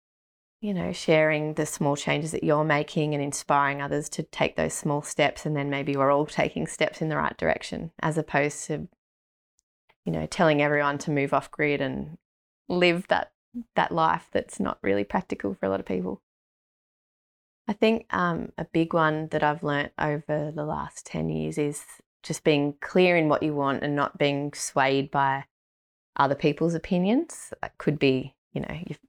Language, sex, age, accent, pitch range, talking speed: English, female, 20-39, Australian, 140-175 Hz, 185 wpm